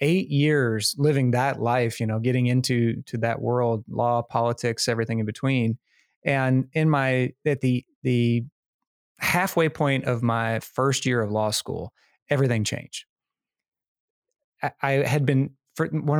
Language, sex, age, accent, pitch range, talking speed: English, male, 30-49, American, 120-145 Hz, 150 wpm